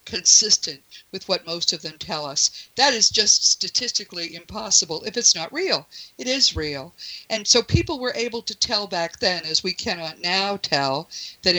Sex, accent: female, American